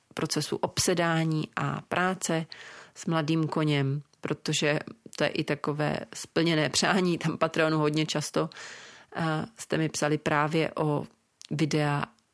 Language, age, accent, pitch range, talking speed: Czech, 40-59, native, 150-170 Hz, 115 wpm